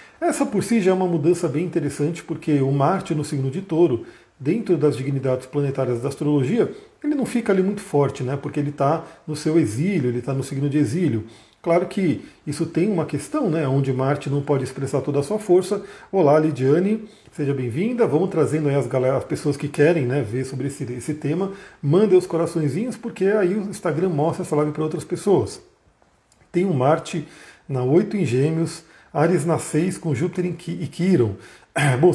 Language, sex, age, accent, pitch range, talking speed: Portuguese, male, 40-59, Brazilian, 140-180 Hz, 195 wpm